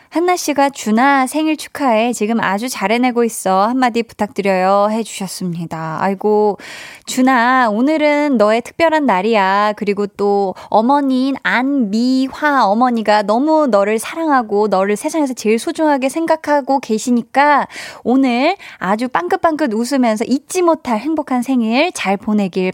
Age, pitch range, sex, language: 20-39, 200-275 Hz, female, Korean